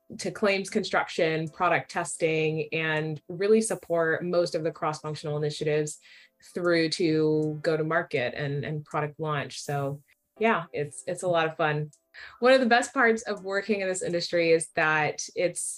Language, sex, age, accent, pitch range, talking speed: English, female, 20-39, American, 155-185 Hz, 165 wpm